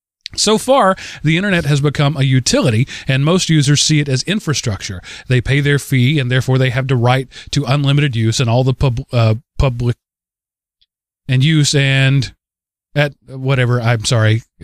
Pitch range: 120-150 Hz